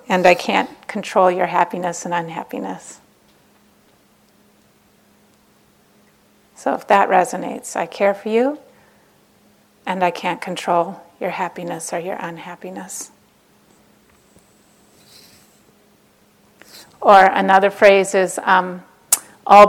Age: 40-59